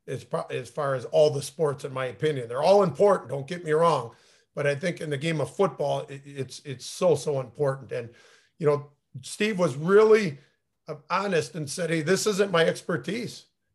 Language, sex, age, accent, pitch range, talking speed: English, male, 50-69, American, 145-185 Hz, 190 wpm